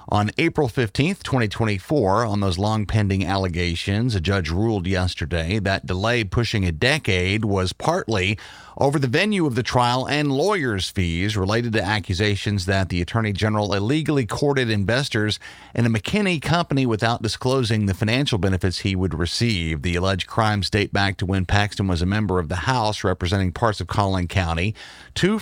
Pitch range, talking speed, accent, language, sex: 95-125 Hz, 170 wpm, American, English, male